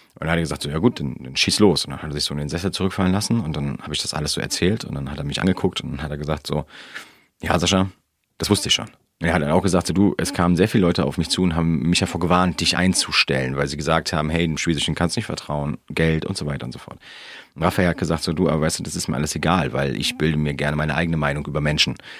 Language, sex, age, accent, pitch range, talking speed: German, male, 30-49, German, 75-90 Hz, 310 wpm